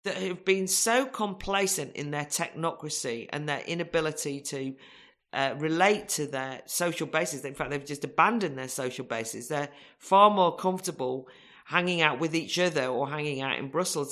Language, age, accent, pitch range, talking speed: English, 40-59, British, 145-185 Hz, 170 wpm